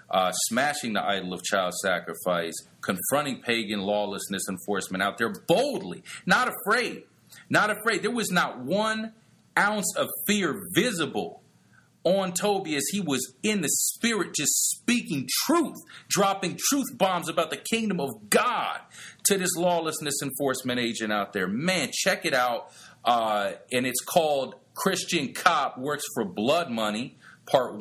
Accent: American